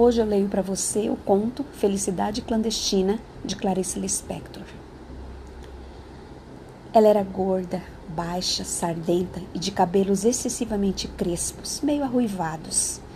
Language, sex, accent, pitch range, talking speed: Portuguese, female, Brazilian, 180-225 Hz, 110 wpm